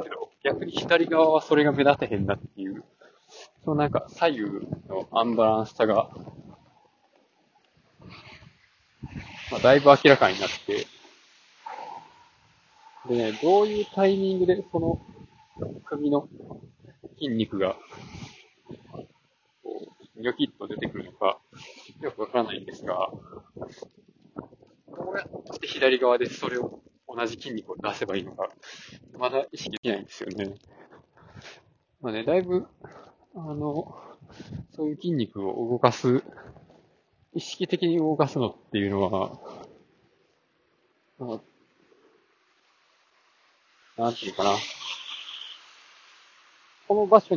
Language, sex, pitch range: Japanese, male, 115-180 Hz